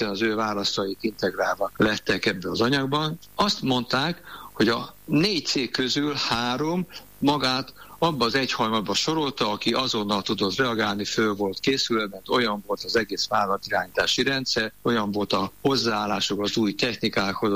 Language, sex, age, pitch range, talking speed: Hungarian, male, 60-79, 105-130 Hz, 145 wpm